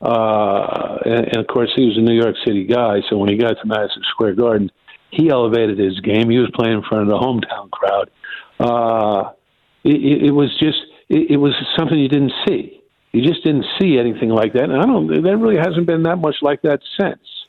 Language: English